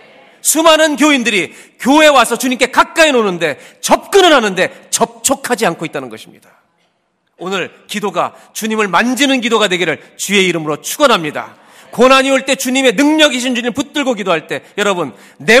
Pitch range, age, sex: 175-265 Hz, 40-59, male